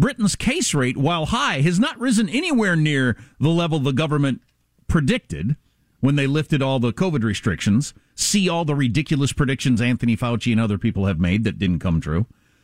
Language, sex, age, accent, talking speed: English, male, 50-69, American, 180 wpm